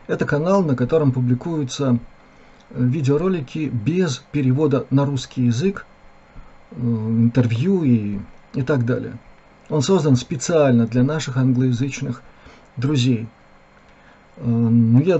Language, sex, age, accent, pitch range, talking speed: Russian, male, 50-69, native, 110-145 Hz, 95 wpm